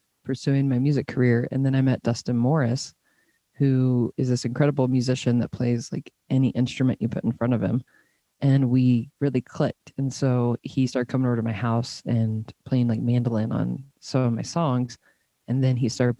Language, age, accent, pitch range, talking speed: English, 20-39, American, 120-130 Hz, 195 wpm